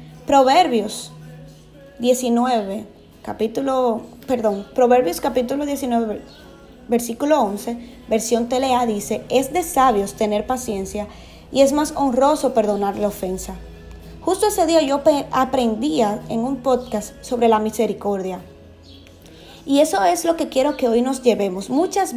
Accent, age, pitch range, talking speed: American, 20-39, 210-265 Hz, 125 wpm